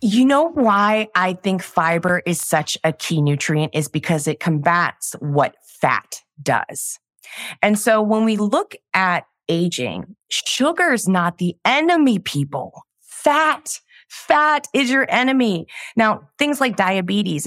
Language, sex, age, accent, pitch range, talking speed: English, female, 30-49, American, 175-250 Hz, 135 wpm